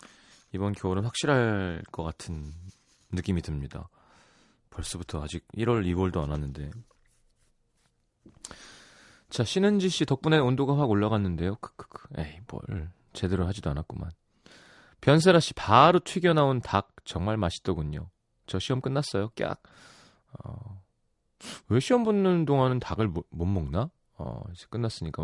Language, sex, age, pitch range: Korean, male, 30-49, 90-130 Hz